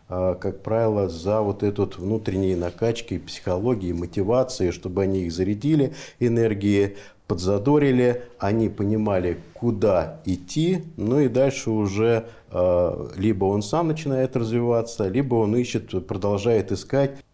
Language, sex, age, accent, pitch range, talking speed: Russian, male, 50-69, native, 90-115 Hz, 115 wpm